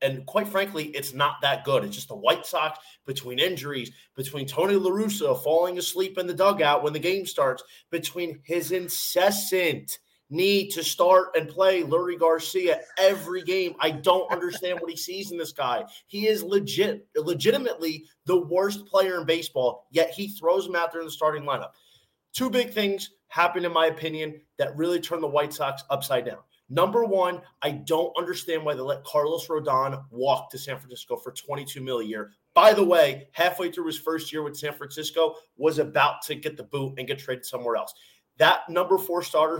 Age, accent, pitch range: 30-49, American, 145-185 Hz